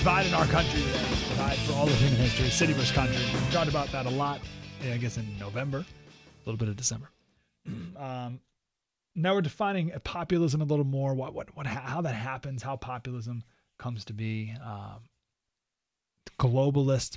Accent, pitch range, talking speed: American, 115-160 Hz, 175 wpm